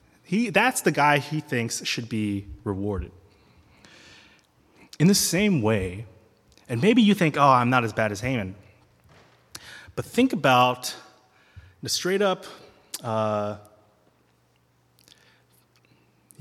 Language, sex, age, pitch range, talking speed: English, male, 30-49, 105-160 Hz, 115 wpm